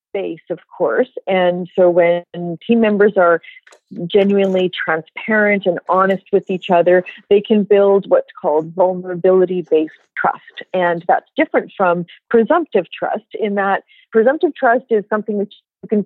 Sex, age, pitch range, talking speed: female, 40-59, 175-215 Hz, 140 wpm